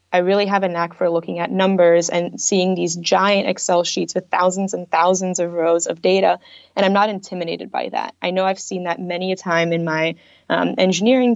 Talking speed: 215 wpm